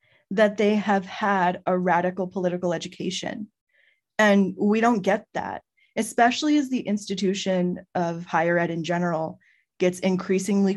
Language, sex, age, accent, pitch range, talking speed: English, female, 20-39, American, 180-220 Hz, 135 wpm